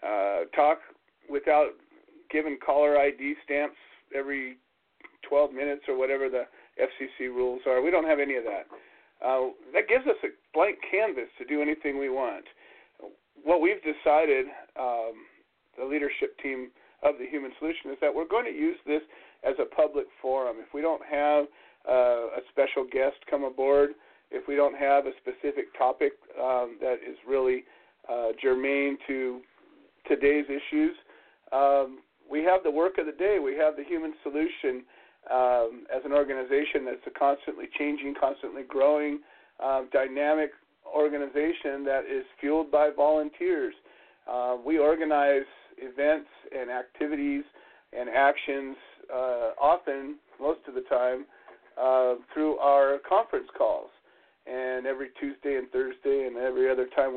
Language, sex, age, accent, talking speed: English, male, 40-59, American, 150 wpm